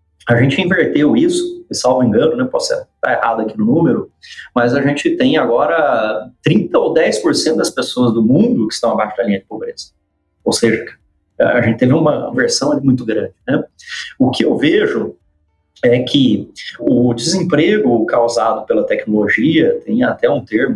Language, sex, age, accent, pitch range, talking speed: Portuguese, male, 30-49, Brazilian, 115-175 Hz, 170 wpm